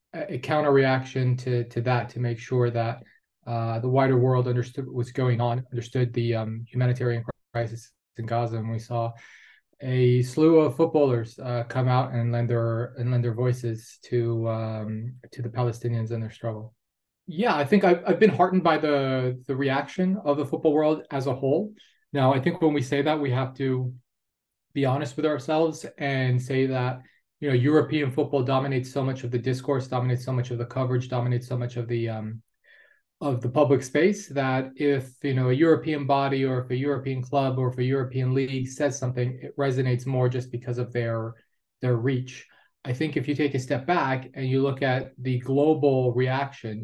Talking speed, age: 200 wpm, 20-39